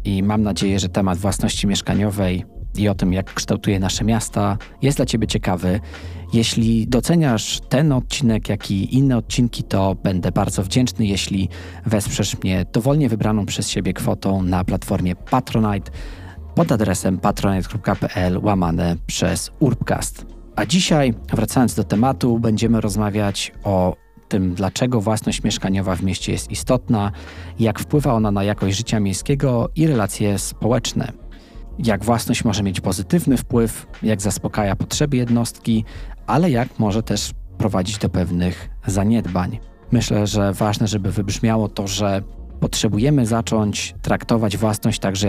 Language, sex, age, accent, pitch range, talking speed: Polish, male, 20-39, native, 95-115 Hz, 135 wpm